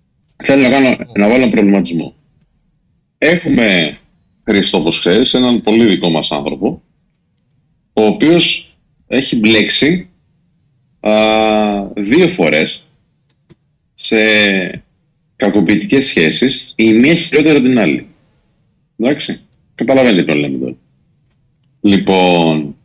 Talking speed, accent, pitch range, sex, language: 90 wpm, native, 90-125 Hz, male, Greek